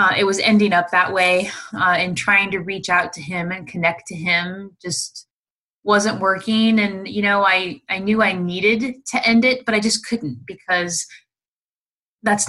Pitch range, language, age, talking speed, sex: 175-215 Hz, English, 20-39, 185 wpm, female